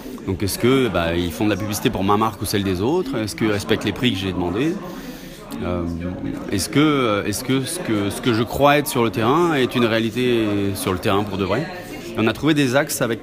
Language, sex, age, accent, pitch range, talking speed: French, male, 30-49, French, 105-130 Hz, 245 wpm